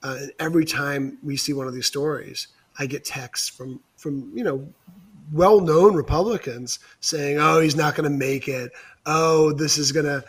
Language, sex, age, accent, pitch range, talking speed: English, male, 30-49, American, 135-160 Hz, 175 wpm